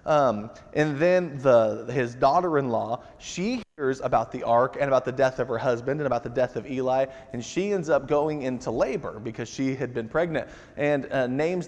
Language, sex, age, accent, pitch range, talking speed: English, male, 20-39, American, 130-180 Hz, 195 wpm